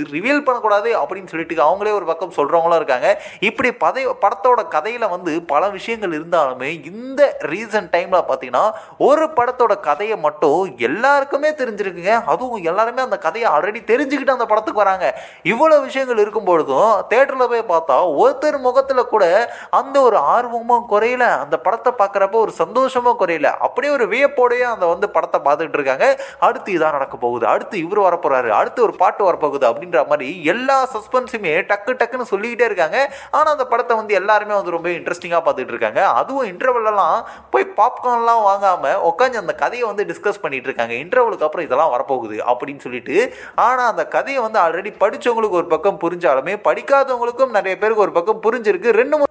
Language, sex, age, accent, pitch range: Tamil, male, 20-39, native, 190-260 Hz